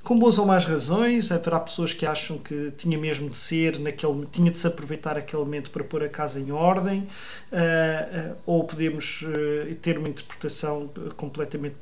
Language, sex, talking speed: Portuguese, male, 170 wpm